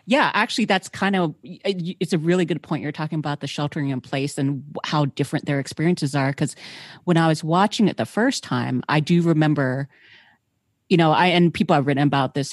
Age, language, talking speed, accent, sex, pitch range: 30-49, English, 210 wpm, American, female, 145-175 Hz